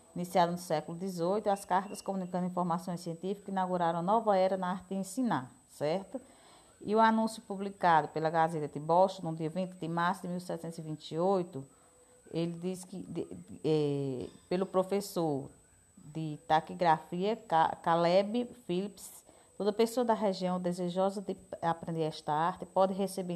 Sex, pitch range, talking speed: female, 170-200 Hz, 135 wpm